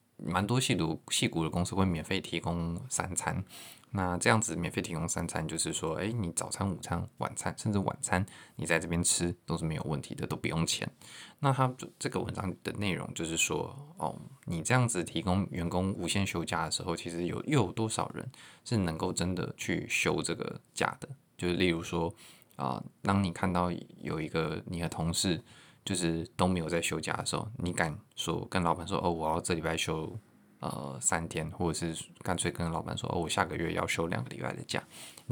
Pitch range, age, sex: 85-105 Hz, 20-39, male